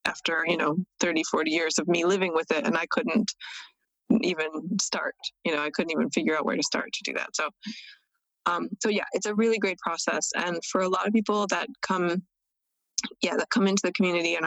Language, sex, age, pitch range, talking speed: English, female, 20-39, 165-205 Hz, 220 wpm